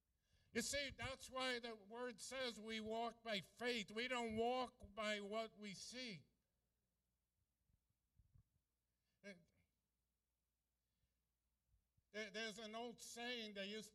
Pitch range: 195-230 Hz